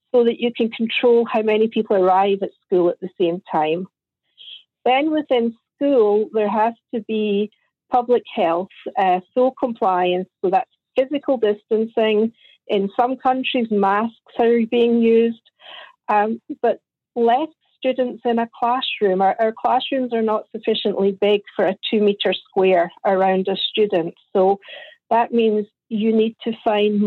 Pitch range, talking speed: 205-245 Hz, 145 wpm